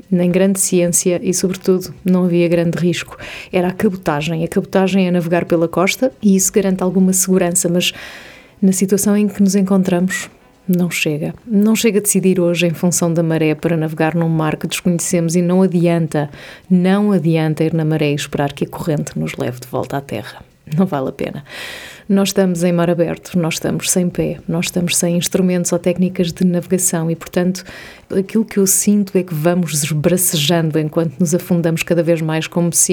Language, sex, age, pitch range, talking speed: Portuguese, female, 30-49, 165-190 Hz, 190 wpm